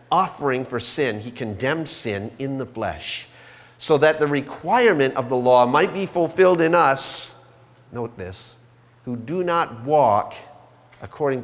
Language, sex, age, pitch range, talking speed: English, male, 50-69, 125-190 Hz, 145 wpm